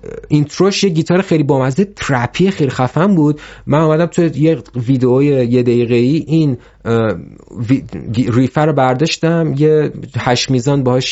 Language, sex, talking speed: Persian, male, 140 wpm